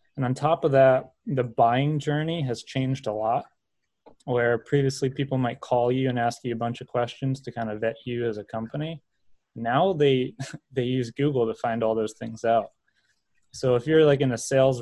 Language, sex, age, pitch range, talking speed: English, male, 20-39, 120-140 Hz, 205 wpm